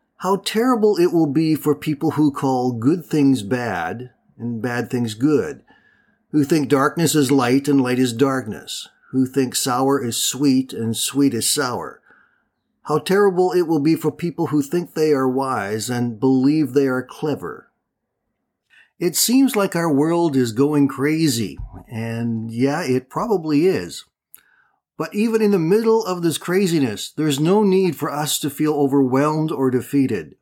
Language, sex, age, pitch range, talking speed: English, male, 50-69, 135-180 Hz, 160 wpm